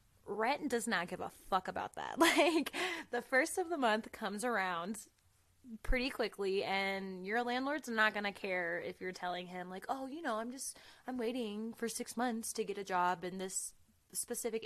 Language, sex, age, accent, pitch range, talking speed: English, female, 20-39, American, 185-235 Hz, 190 wpm